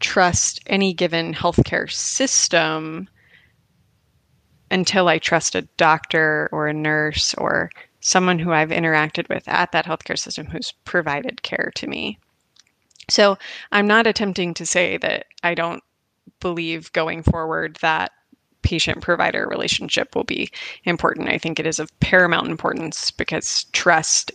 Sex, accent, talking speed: female, American, 140 wpm